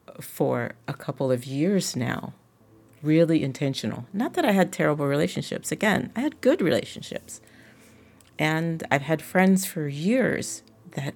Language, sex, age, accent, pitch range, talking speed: English, female, 40-59, American, 110-165 Hz, 140 wpm